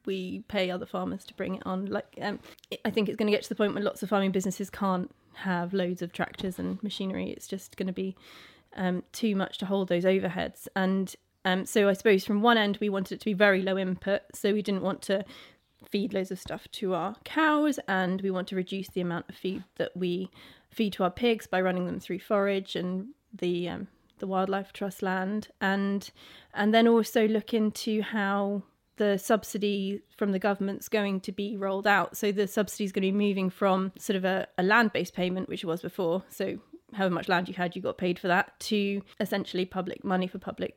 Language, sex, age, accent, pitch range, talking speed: English, female, 20-39, British, 185-210 Hz, 220 wpm